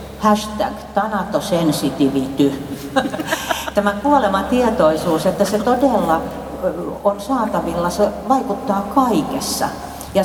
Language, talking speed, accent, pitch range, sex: Finnish, 80 wpm, native, 155-210 Hz, female